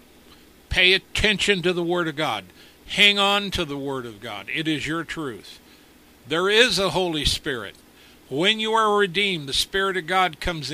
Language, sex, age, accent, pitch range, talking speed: English, male, 60-79, American, 140-180 Hz, 180 wpm